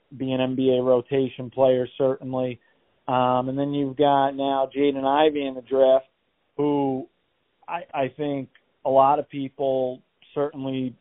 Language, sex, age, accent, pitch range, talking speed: English, male, 40-59, American, 130-150 Hz, 140 wpm